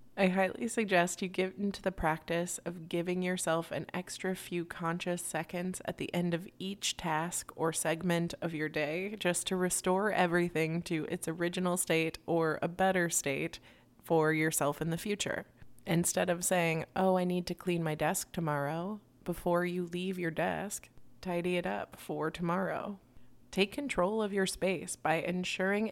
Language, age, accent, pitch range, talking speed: English, 20-39, American, 165-190 Hz, 165 wpm